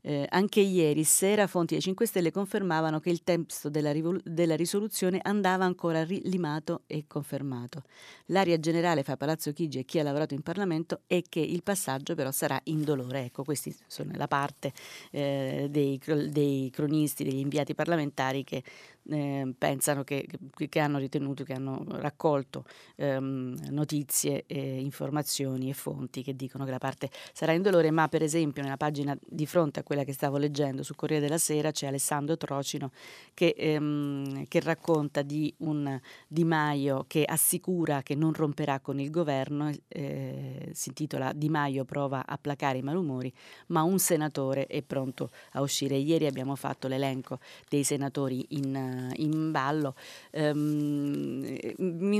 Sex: female